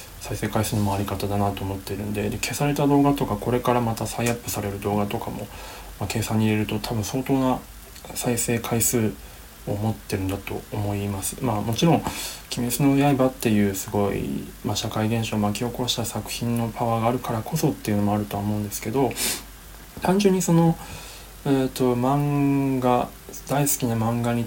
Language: Japanese